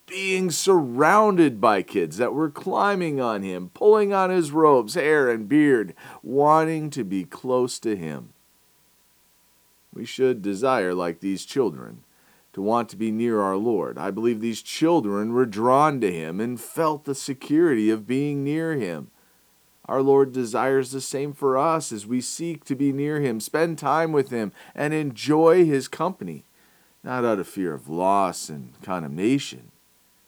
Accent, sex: American, male